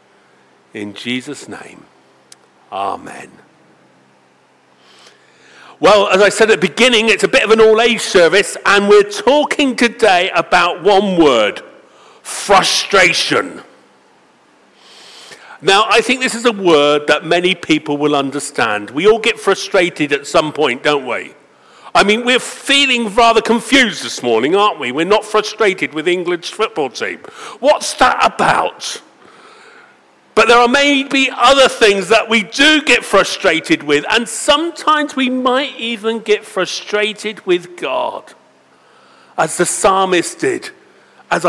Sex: male